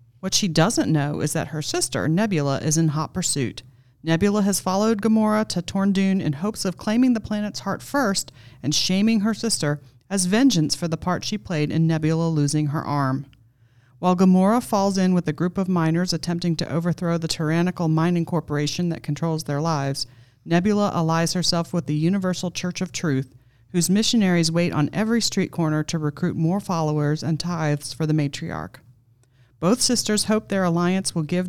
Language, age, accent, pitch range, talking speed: English, 40-59, American, 145-190 Hz, 185 wpm